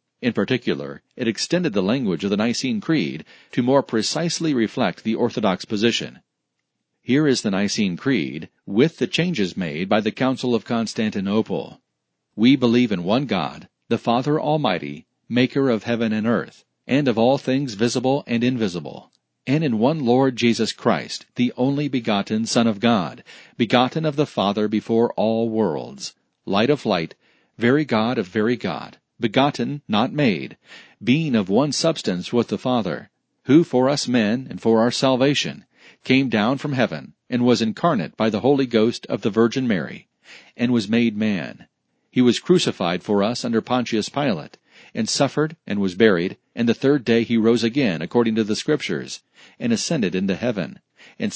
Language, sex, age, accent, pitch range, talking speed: English, male, 40-59, American, 110-140 Hz, 170 wpm